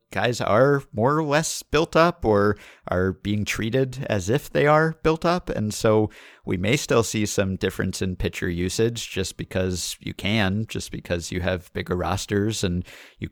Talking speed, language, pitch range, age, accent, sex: 180 wpm, English, 95-115 Hz, 50-69, American, male